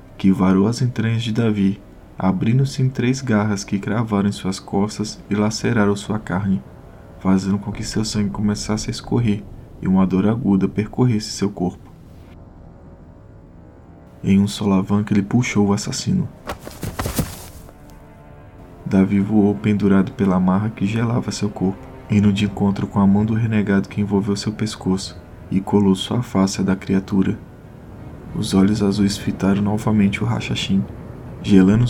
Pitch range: 95-110 Hz